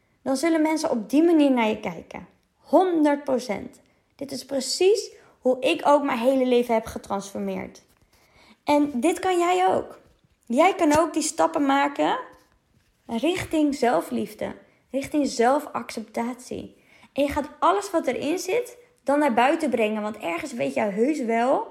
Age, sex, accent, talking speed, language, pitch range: 20-39, female, Dutch, 145 wpm, Dutch, 235-310 Hz